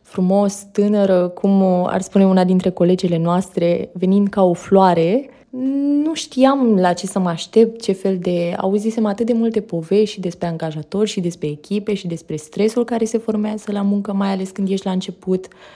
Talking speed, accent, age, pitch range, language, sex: 185 wpm, native, 20-39, 185-215 Hz, Romanian, female